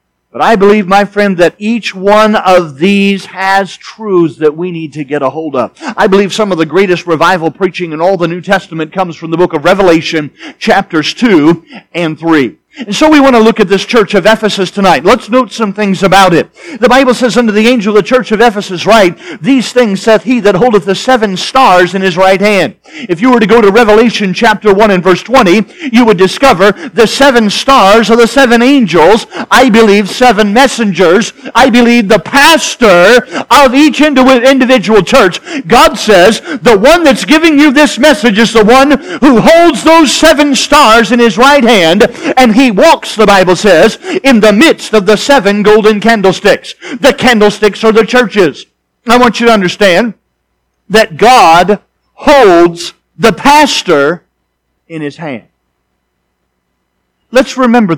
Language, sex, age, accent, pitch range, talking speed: English, male, 50-69, American, 185-255 Hz, 180 wpm